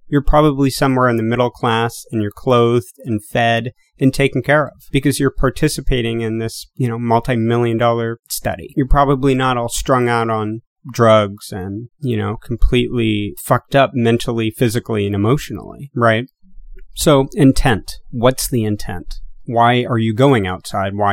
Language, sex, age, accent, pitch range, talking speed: English, male, 30-49, American, 105-125 Hz, 160 wpm